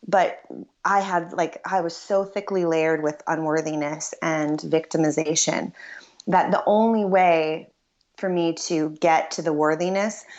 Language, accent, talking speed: English, American, 140 wpm